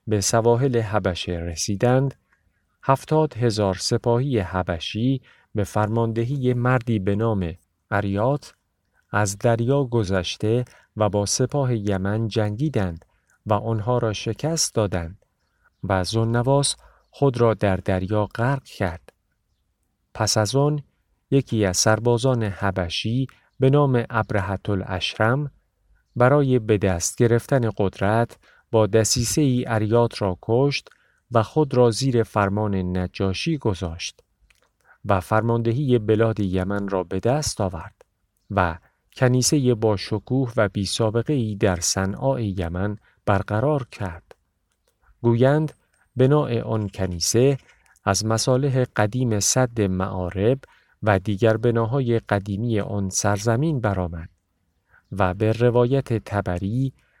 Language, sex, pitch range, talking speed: Persian, male, 100-125 Hz, 110 wpm